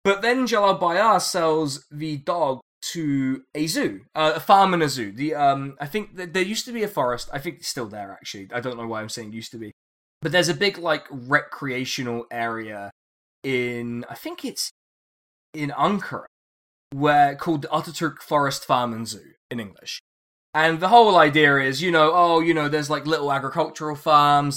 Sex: male